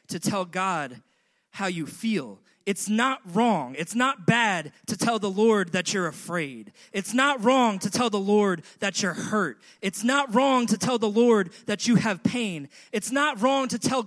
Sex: male